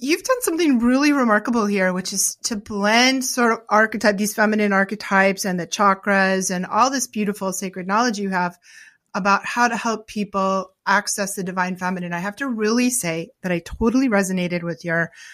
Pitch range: 195-260 Hz